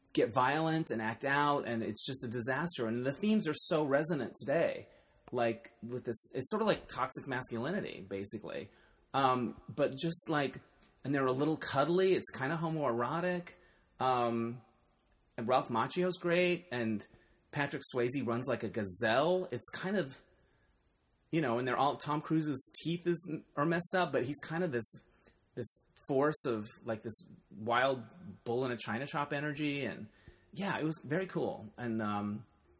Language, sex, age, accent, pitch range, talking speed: English, male, 30-49, American, 115-155 Hz, 170 wpm